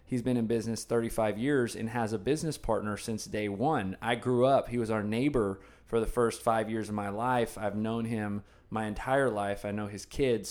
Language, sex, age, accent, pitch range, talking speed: English, male, 20-39, American, 105-125 Hz, 225 wpm